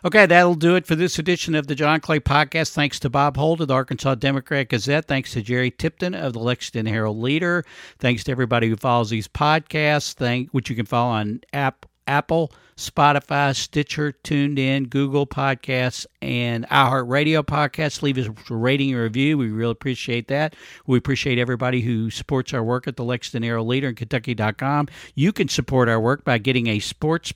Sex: male